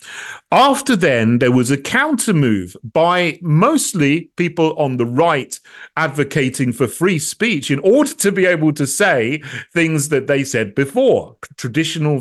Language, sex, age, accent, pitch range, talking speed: English, male, 40-59, British, 125-160 Hz, 150 wpm